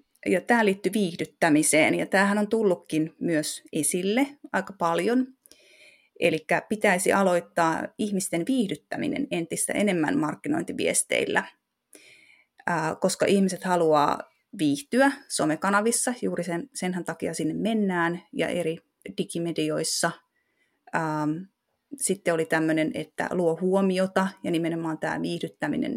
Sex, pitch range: female, 165-195 Hz